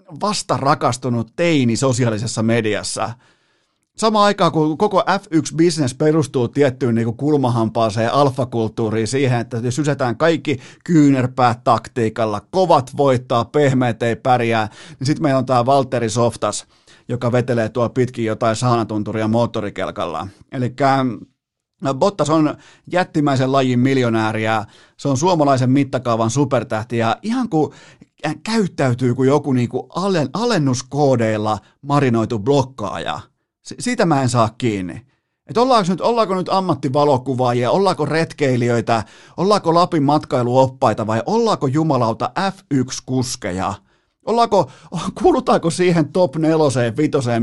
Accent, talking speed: native, 115 wpm